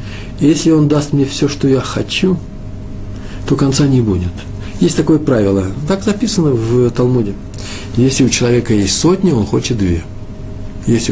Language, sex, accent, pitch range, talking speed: Russian, male, native, 105-145 Hz, 150 wpm